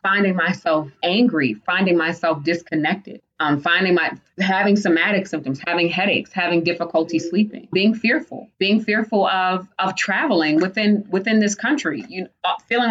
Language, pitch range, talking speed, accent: English, 160-195 Hz, 145 wpm, American